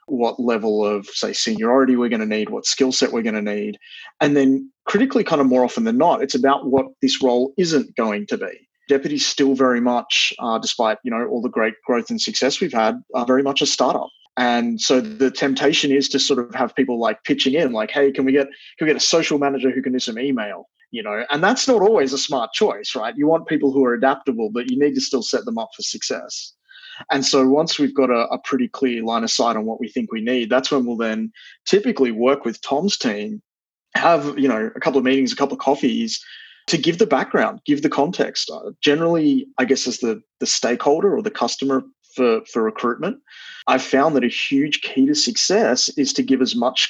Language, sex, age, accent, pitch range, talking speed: English, male, 30-49, Australian, 125-170 Hz, 235 wpm